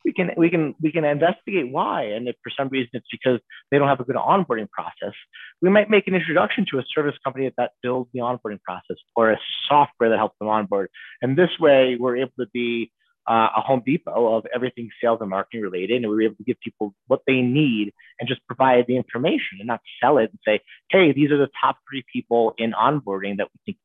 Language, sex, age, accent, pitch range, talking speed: English, male, 30-49, American, 105-145 Hz, 235 wpm